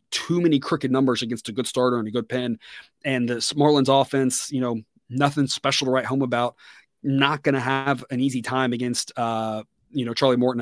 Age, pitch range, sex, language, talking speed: 30-49, 120-140 Hz, male, English, 210 wpm